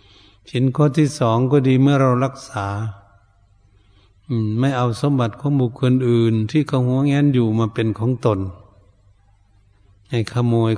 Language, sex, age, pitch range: Thai, male, 70-89, 100-125 Hz